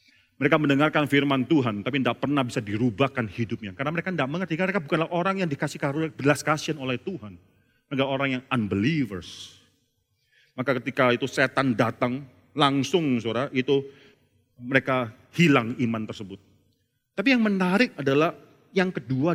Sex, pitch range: male, 125-180 Hz